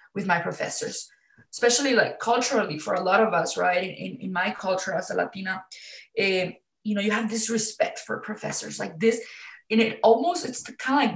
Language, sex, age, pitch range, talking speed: English, female, 20-39, 185-225 Hz, 205 wpm